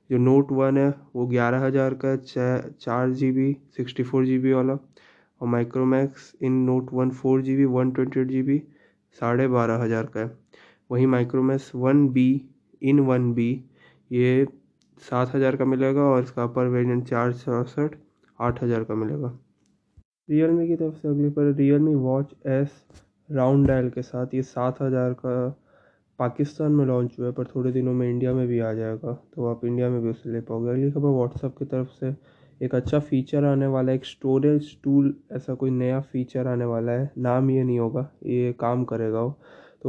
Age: 20-39